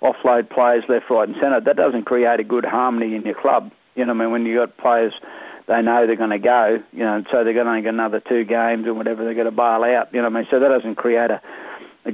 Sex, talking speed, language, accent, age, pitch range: male, 290 wpm, English, Australian, 40-59, 115-125 Hz